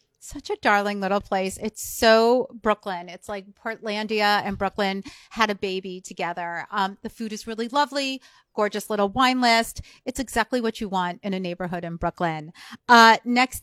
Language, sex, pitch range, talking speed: English, female, 195-225 Hz, 170 wpm